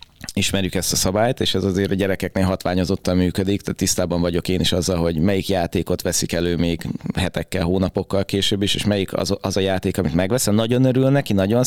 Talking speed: 200 wpm